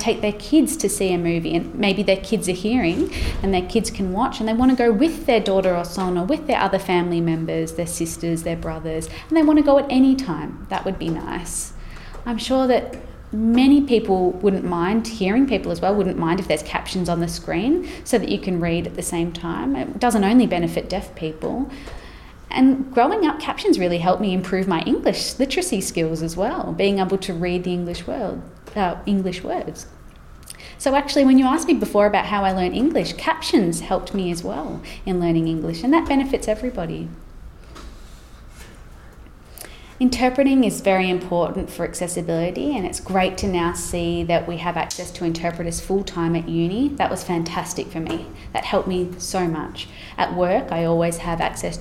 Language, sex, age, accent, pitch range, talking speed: English, female, 20-39, Australian, 170-235 Hz, 195 wpm